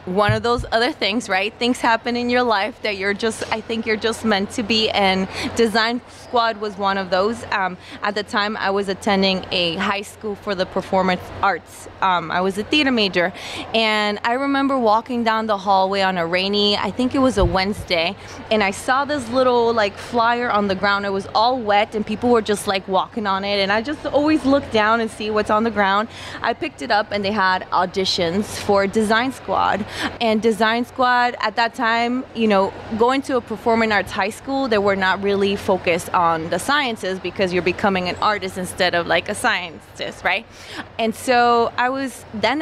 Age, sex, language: 20-39, female, English